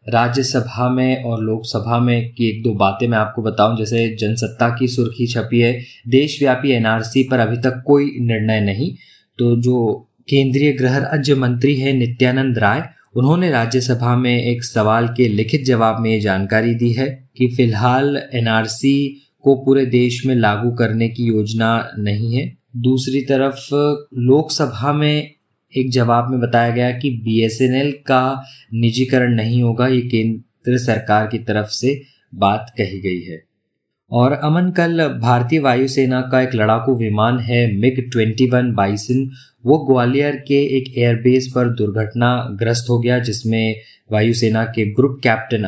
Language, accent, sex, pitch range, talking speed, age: Hindi, native, male, 115-130 Hz, 150 wpm, 20-39